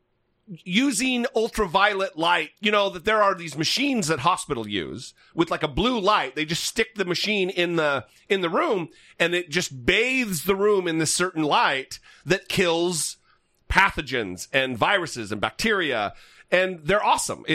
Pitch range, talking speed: 160-215 Hz, 165 wpm